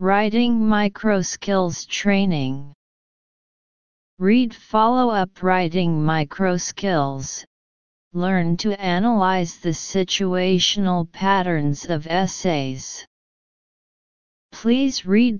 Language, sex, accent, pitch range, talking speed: English, female, American, 160-195 Hz, 70 wpm